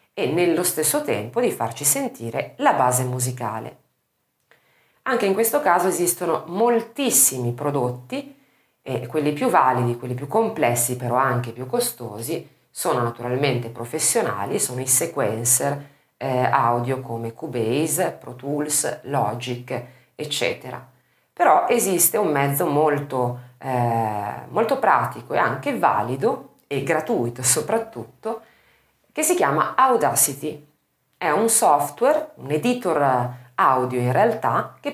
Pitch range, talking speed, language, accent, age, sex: 125-175 Hz, 120 wpm, Italian, native, 40-59, female